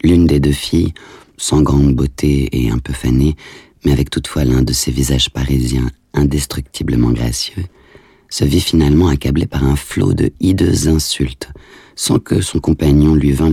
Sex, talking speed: male, 165 wpm